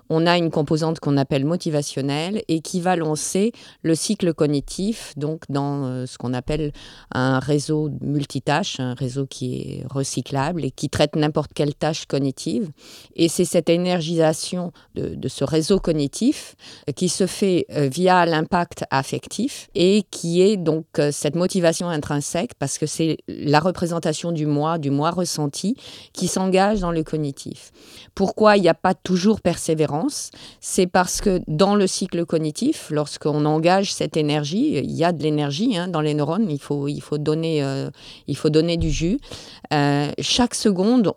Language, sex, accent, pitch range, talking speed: French, female, French, 150-185 Hz, 165 wpm